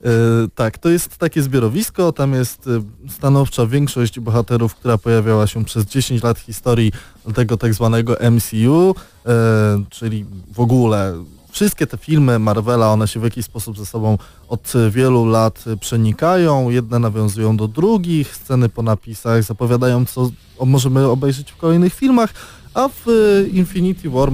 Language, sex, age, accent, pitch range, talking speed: Polish, male, 20-39, native, 110-145 Hz, 140 wpm